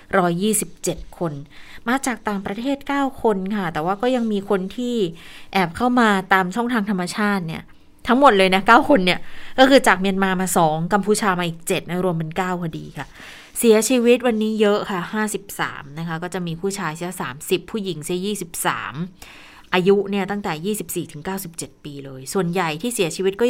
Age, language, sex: 20-39, Thai, female